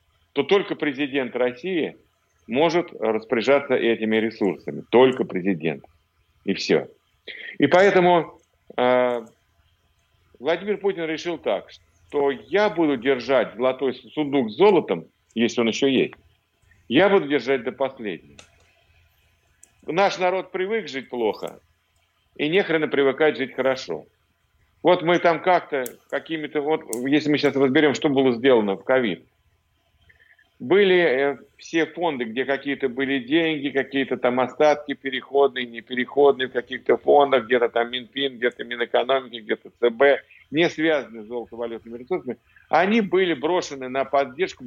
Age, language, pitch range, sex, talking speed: 50-69, Russian, 115-150 Hz, male, 125 wpm